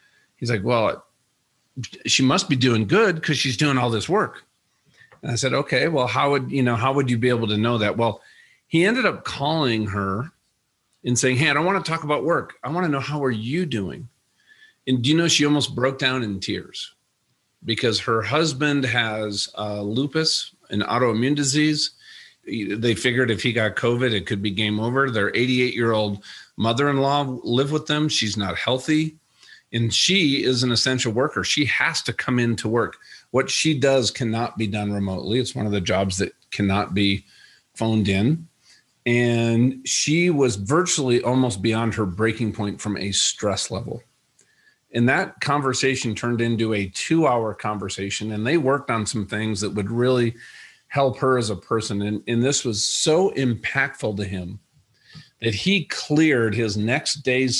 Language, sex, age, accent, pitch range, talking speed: English, male, 50-69, American, 110-140 Hz, 180 wpm